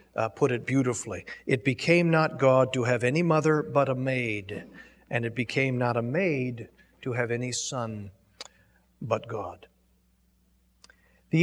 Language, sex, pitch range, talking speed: English, male, 120-155 Hz, 145 wpm